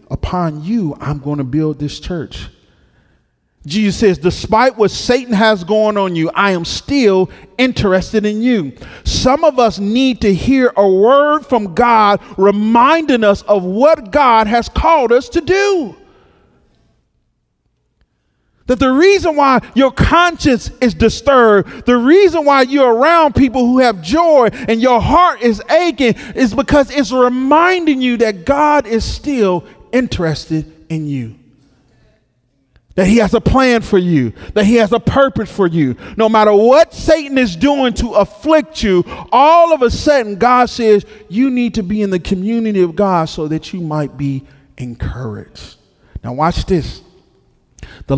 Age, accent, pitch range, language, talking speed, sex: 40-59, American, 160-255 Hz, English, 155 wpm, male